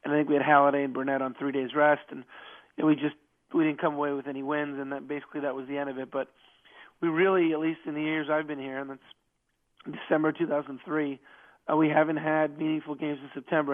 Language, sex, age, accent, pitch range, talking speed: English, male, 30-49, American, 140-160 Hz, 245 wpm